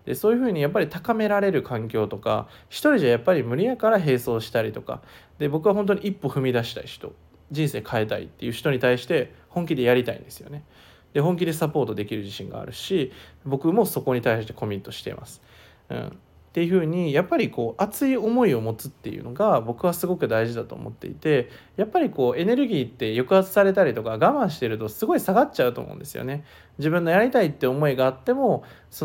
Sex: male